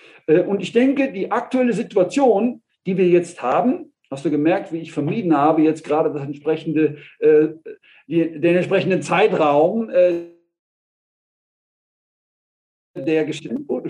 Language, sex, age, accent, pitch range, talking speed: German, male, 50-69, German, 165-235 Hz, 115 wpm